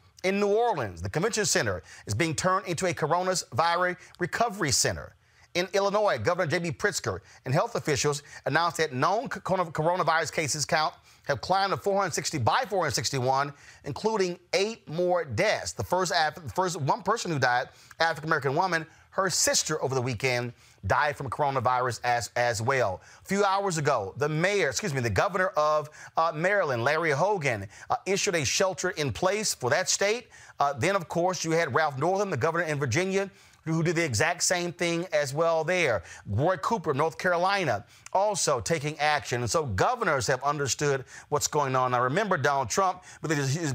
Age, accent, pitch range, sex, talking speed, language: 30-49, American, 135-180 Hz, male, 175 wpm, English